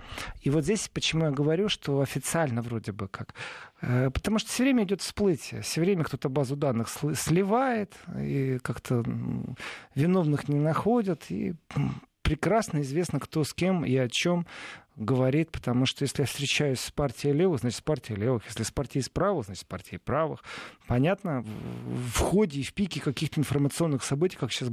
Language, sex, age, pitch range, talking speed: Russian, male, 40-59, 125-170 Hz, 165 wpm